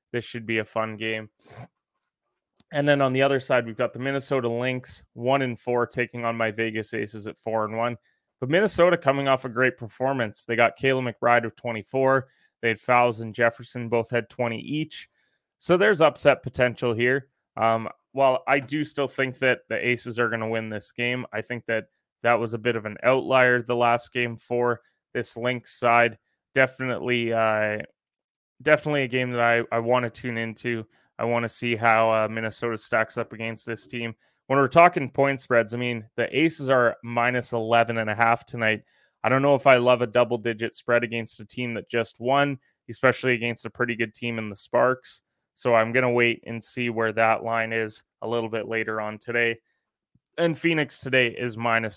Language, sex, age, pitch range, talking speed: English, male, 20-39, 115-125 Hz, 195 wpm